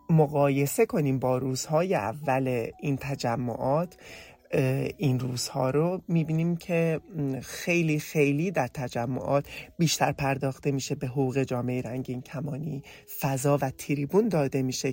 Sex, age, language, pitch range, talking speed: male, 30-49, English, 130-160 Hz, 115 wpm